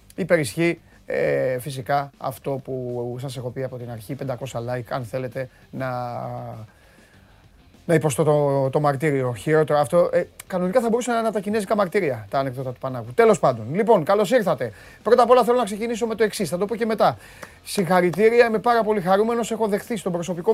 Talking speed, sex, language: 185 wpm, male, Greek